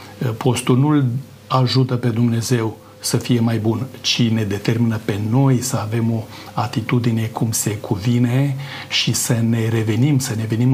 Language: Romanian